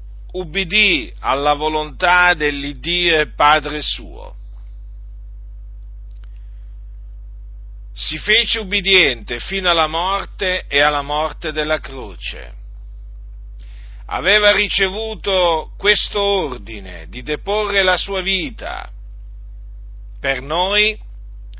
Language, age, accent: Italian, 50-69, native